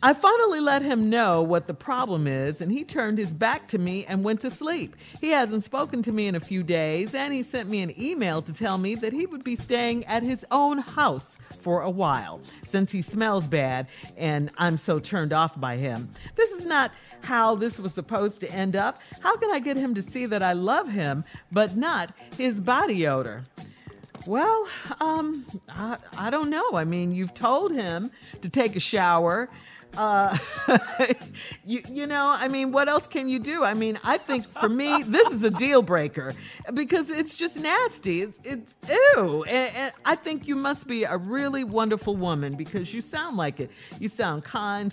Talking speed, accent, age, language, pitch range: 200 wpm, American, 50-69, English, 185-270 Hz